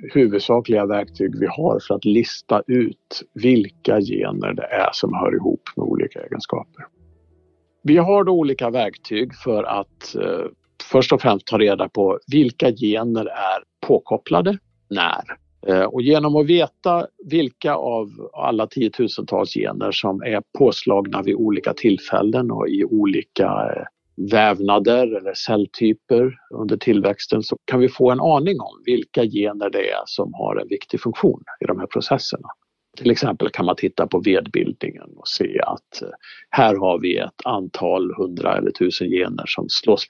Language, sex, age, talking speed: Swedish, male, 50-69, 150 wpm